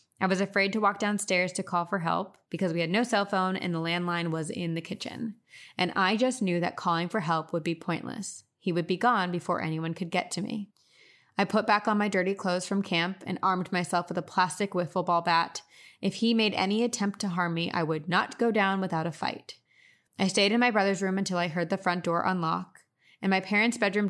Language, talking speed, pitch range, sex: English, 235 wpm, 175-205 Hz, female